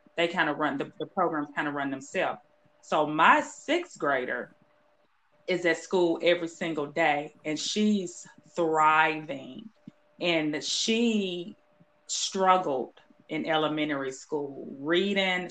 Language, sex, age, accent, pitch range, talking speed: English, female, 20-39, American, 155-200 Hz, 120 wpm